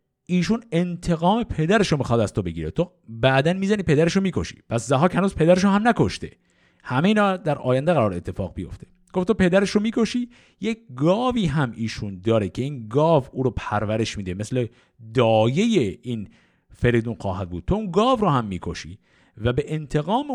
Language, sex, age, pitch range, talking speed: Persian, male, 50-69, 110-185 Hz, 175 wpm